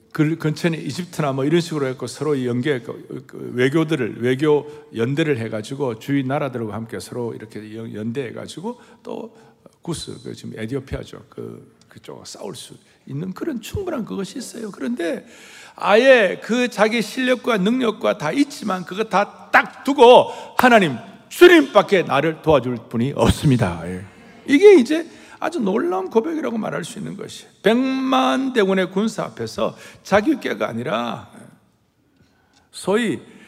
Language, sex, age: Korean, male, 60-79